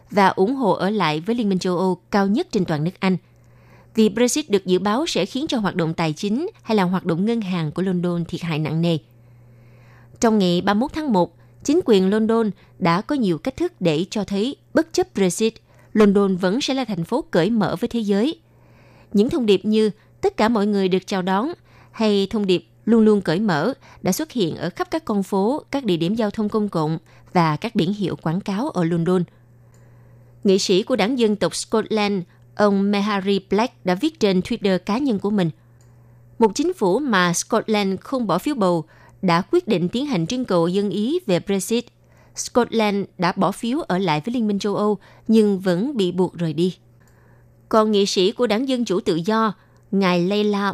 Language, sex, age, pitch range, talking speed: Vietnamese, female, 20-39, 175-220 Hz, 210 wpm